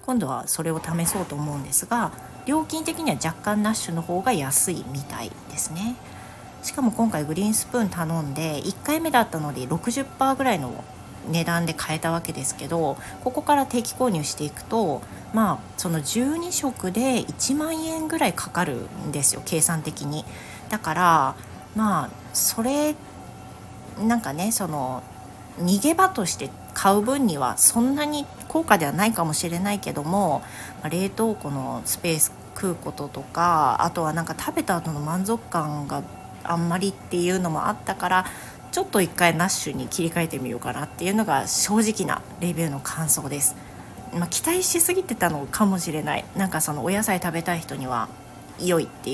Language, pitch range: Japanese, 150-225 Hz